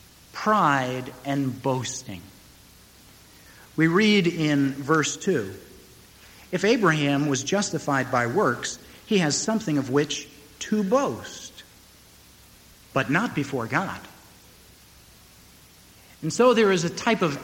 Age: 60-79